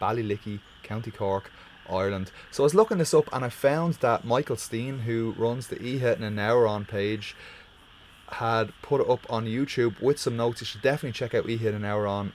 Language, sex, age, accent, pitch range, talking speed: English, male, 20-39, Irish, 100-115 Hz, 225 wpm